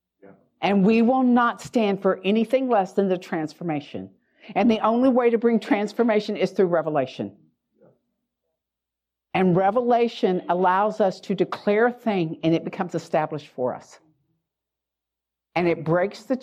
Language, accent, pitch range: English, American, 160-245 Hz